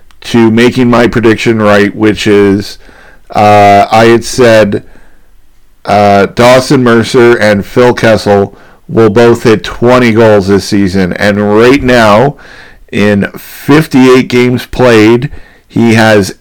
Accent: American